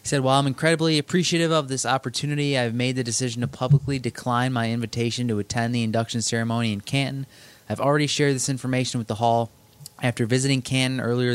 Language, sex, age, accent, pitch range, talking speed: English, male, 20-39, American, 110-130 Hz, 190 wpm